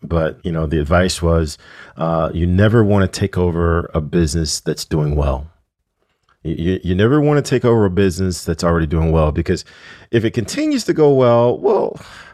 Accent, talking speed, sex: American, 180 wpm, male